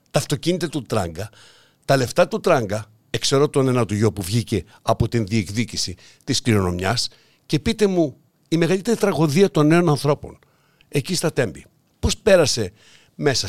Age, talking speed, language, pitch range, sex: 60-79, 155 wpm, Greek, 110-150 Hz, male